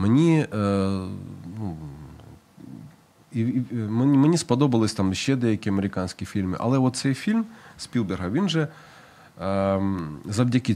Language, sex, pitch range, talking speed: Ukrainian, male, 100-130 Hz, 110 wpm